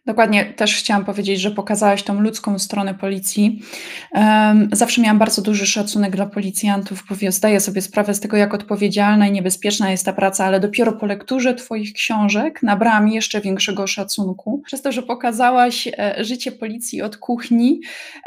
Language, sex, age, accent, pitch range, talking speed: Polish, female, 20-39, native, 205-245 Hz, 160 wpm